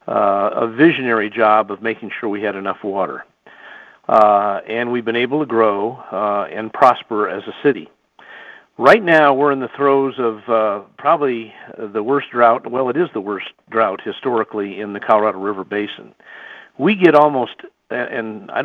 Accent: American